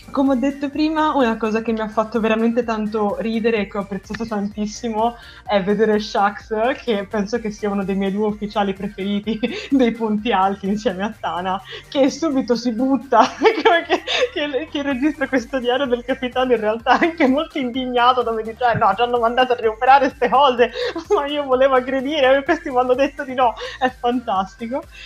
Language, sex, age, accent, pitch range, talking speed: Italian, female, 20-39, native, 205-265 Hz, 180 wpm